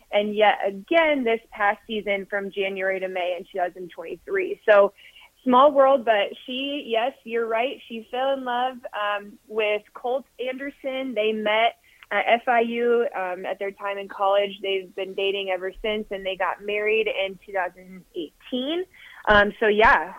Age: 20-39